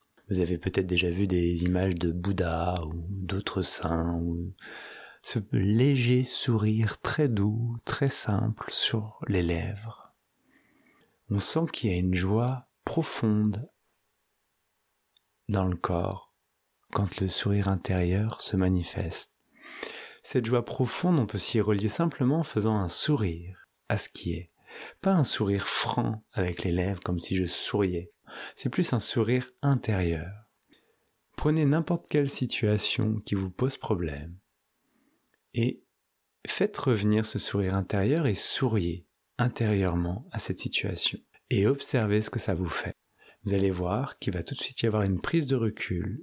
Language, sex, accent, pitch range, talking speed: French, male, French, 90-120 Hz, 145 wpm